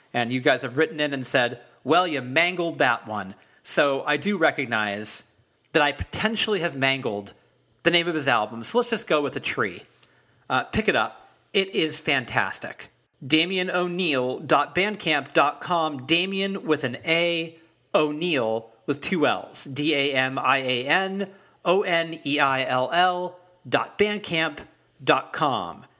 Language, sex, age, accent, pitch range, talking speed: English, male, 40-59, American, 130-175 Hz, 120 wpm